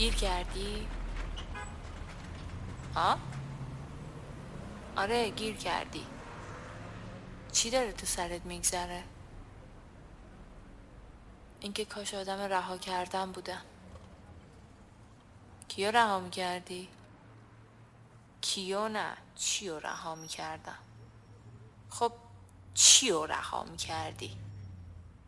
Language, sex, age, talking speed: Persian, female, 30-49, 70 wpm